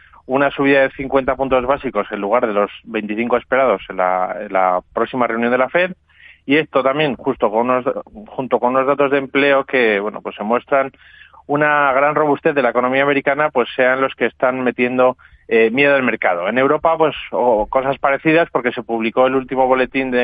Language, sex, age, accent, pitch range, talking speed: Spanish, male, 30-49, Spanish, 120-140 Hz, 205 wpm